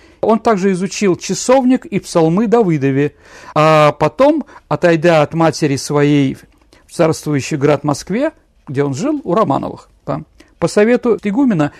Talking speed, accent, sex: 125 wpm, native, male